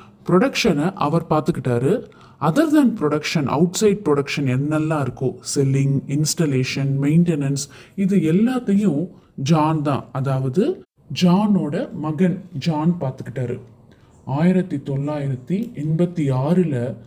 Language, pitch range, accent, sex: Tamil, 140-185 Hz, native, male